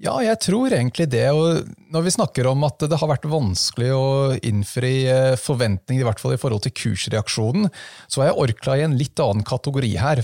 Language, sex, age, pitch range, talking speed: English, male, 30-49, 110-140 Hz, 205 wpm